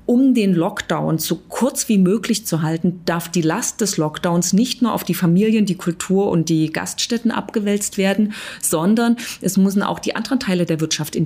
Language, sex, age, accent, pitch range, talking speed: German, female, 30-49, German, 170-195 Hz, 190 wpm